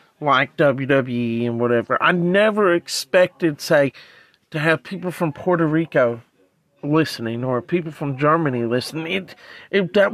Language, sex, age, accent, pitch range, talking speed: English, male, 40-59, American, 140-180 Hz, 125 wpm